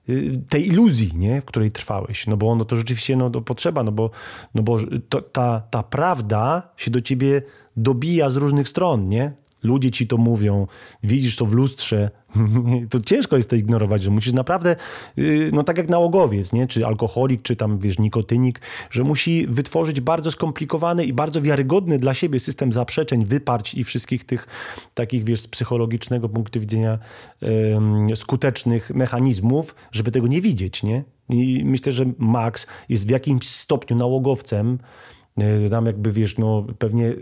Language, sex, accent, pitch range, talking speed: Polish, male, native, 110-140 Hz, 155 wpm